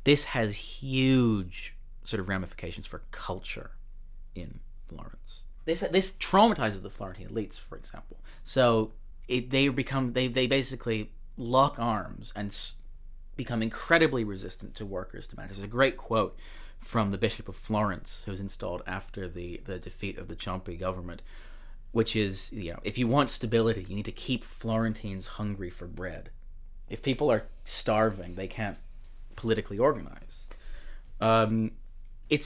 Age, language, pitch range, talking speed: 30-49, English, 95-130 Hz, 150 wpm